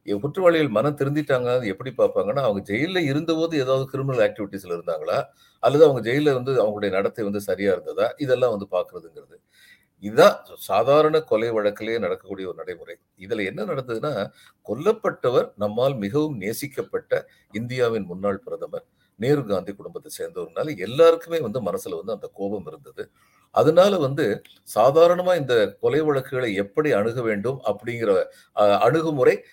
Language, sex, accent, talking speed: Tamil, male, native, 130 wpm